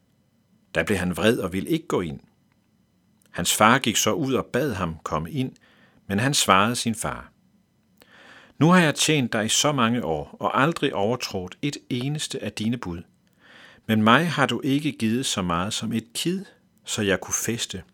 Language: Danish